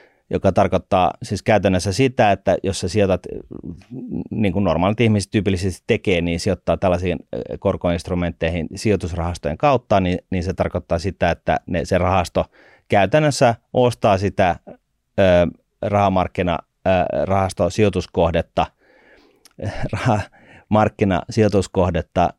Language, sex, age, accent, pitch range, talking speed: Finnish, male, 30-49, native, 85-105 Hz, 100 wpm